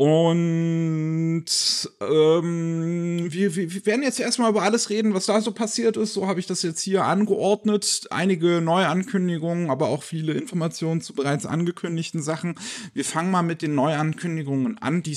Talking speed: 160 wpm